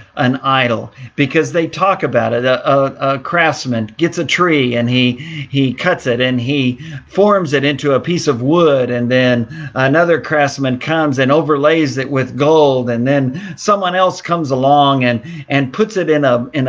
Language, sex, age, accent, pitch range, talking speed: English, male, 50-69, American, 130-165 Hz, 185 wpm